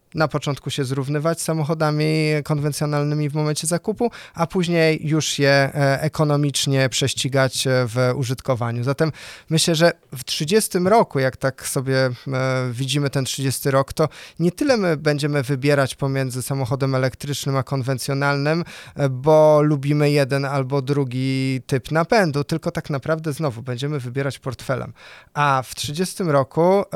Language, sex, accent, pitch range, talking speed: Polish, male, native, 135-165 Hz, 135 wpm